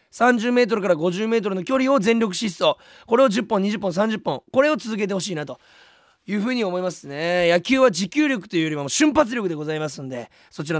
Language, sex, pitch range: Japanese, male, 170-265 Hz